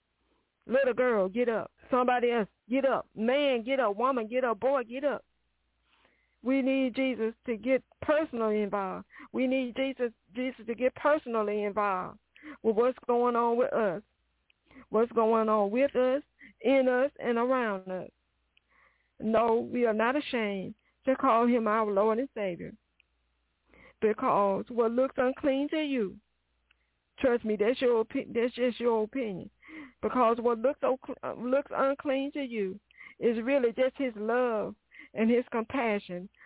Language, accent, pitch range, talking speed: English, American, 215-265 Hz, 150 wpm